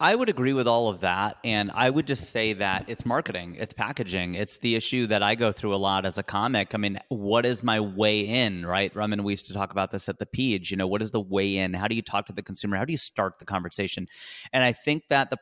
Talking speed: 280 wpm